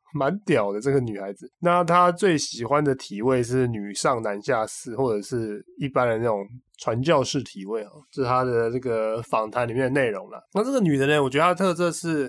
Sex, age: male, 20-39